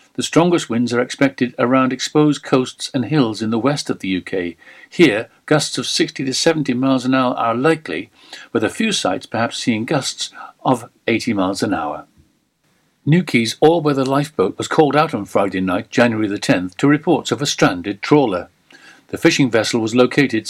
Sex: male